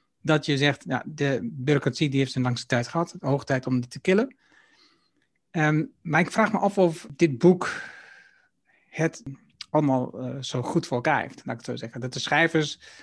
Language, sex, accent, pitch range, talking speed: Dutch, male, Dutch, 135-170 Hz, 200 wpm